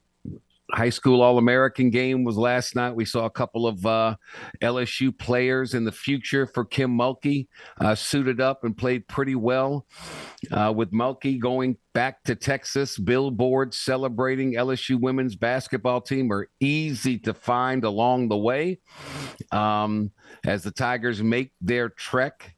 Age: 50-69